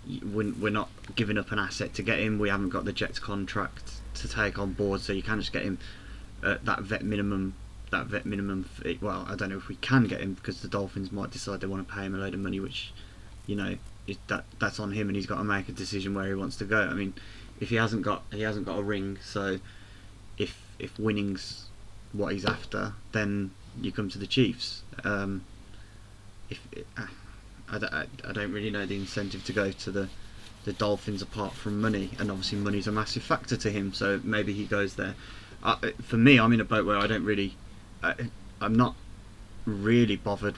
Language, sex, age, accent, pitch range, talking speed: English, male, 20-39, British, 100-110 Hz, 215 wpm